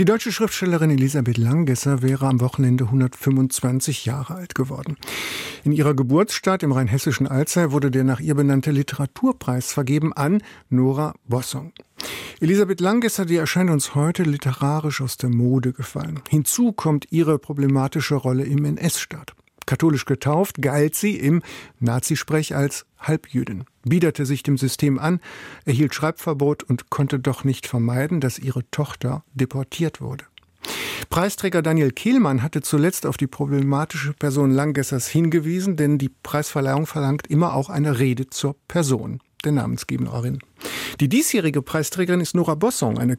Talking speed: 140 wpm